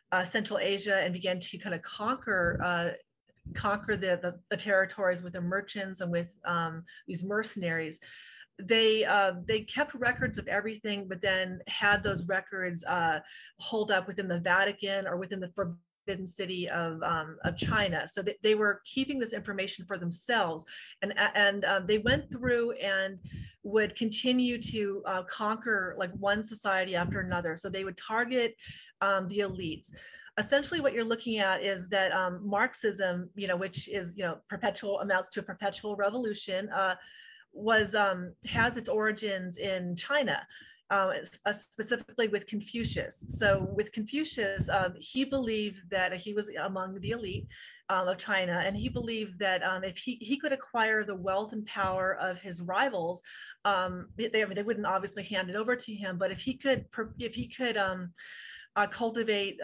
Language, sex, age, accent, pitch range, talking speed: English, female, 30-49, American, 185-220 Hz, 165 wpm